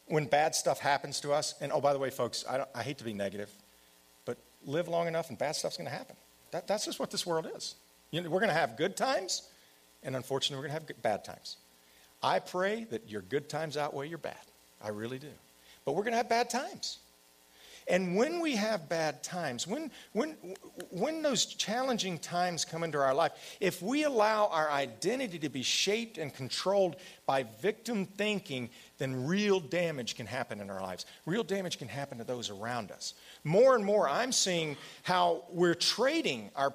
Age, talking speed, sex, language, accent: 50-69, 200 wpm, male, English, American